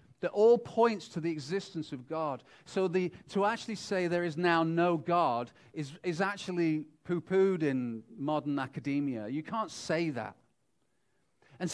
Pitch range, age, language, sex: 125-175 Hz, 40-59, English, male